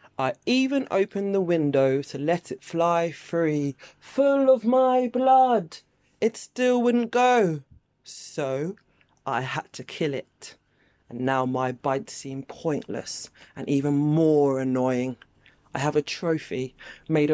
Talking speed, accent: 135 wpm, British